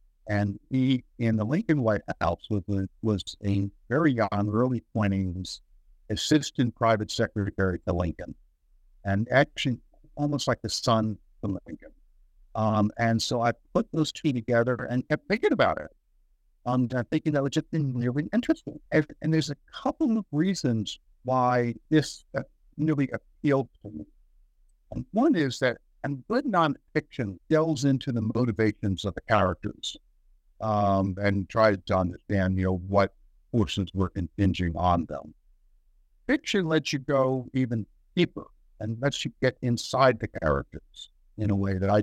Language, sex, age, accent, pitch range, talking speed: English, male, 60-79, American, 95-130 Hz, 155 wpm